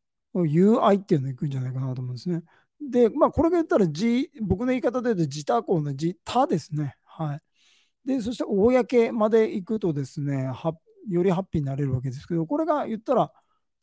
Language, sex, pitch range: Japanese, male, 145-215 Hz